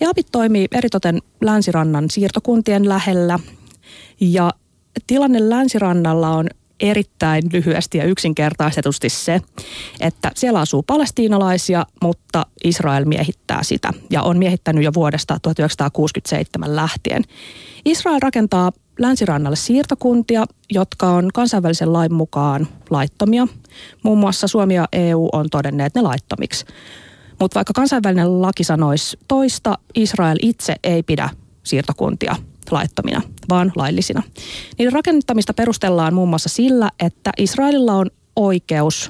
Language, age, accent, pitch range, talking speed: Finnish, 30-49, native, 160-220 Hz, 110 wpm